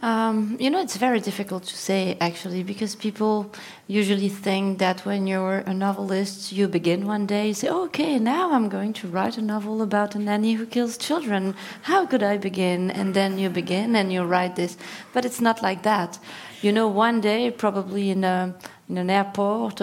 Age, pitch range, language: 30-49, 190-225 Hz, English